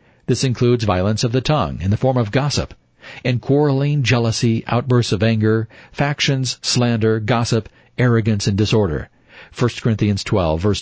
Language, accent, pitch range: English, American, 110-135 Hz